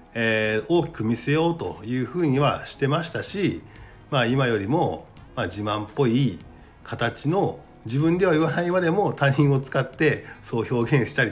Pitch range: 110-145 Hz